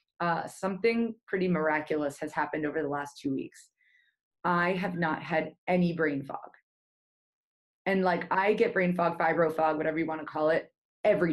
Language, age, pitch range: English, 20-39, 155-190 Hz